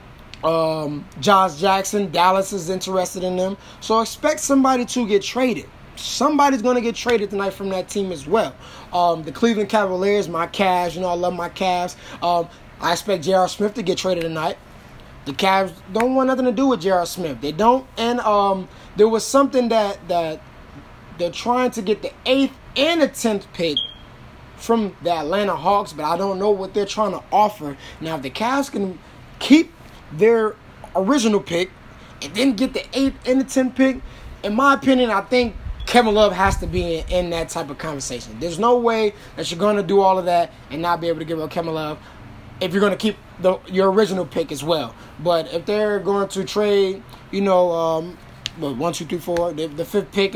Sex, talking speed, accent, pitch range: male, 200 wpm, American, 170-220 Hz